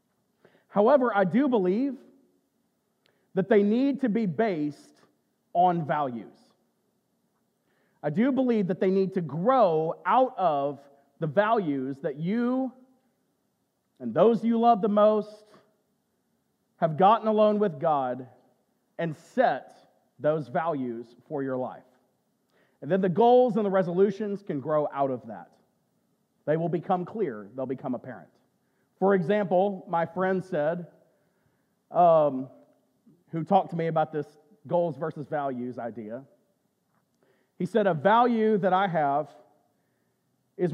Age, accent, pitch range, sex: 40-59, American, 145-210 Hz, male